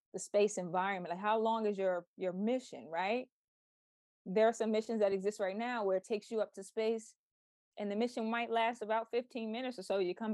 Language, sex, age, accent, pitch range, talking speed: English, female, 20-39, American, 185-220 Hz, 220 wpm